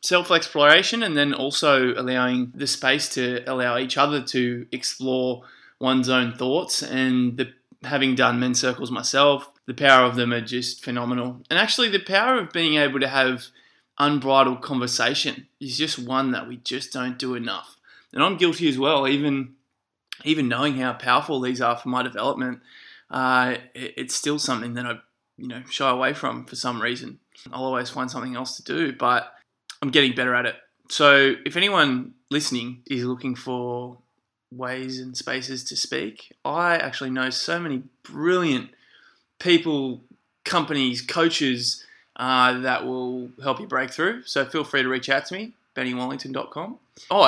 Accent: Australian